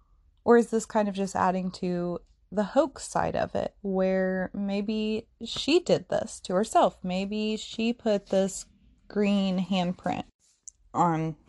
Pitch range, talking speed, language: 170-225 Hz, 140 wpm, English